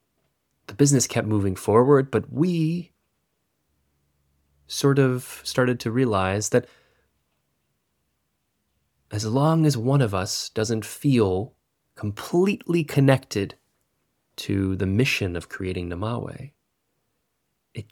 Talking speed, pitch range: 100 wpm, 100-135 Hz